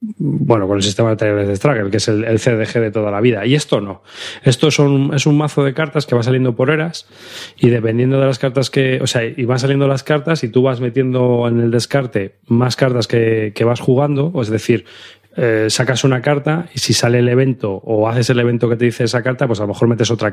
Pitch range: 110-140 Hz